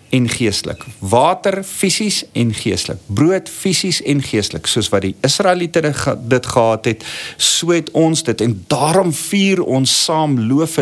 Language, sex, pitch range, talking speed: English, male, 105-160 Hz, 150 wpm